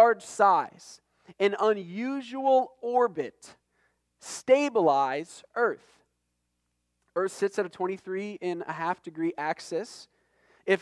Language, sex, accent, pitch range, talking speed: English, male, American, 180-230 Hz, 100 wpm